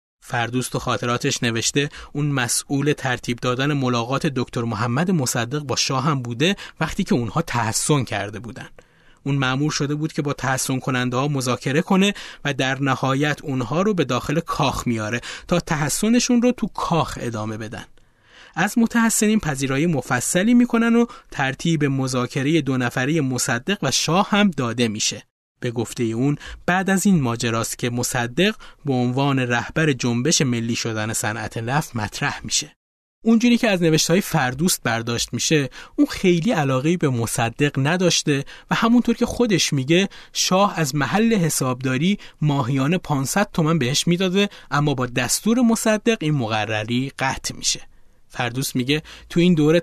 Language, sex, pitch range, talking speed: Persian, male, 125-175 Hz, 145 wpm